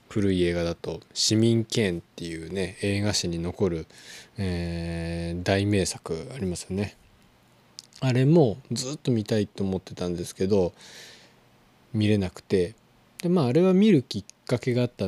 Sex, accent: male, native